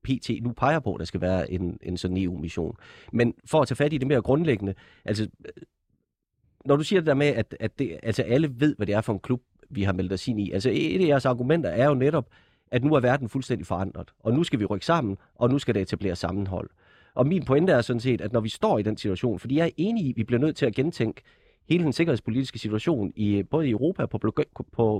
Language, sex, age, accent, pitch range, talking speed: Danish, male, 30-49, native, 105-145 Hz, 255 wpm